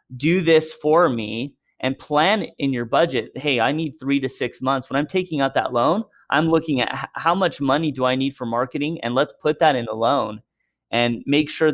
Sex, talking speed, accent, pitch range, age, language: male, 220 wpm, American, 120-160 Hz, 30-49, English